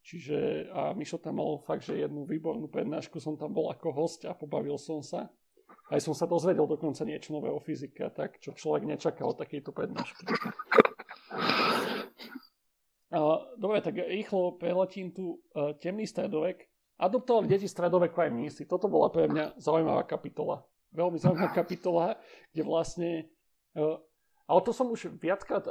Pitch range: 155-190 Hz